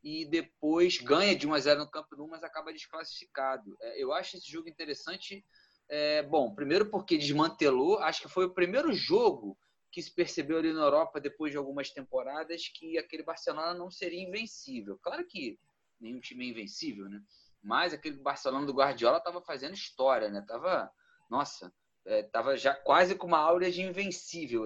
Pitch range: 140-185 Hz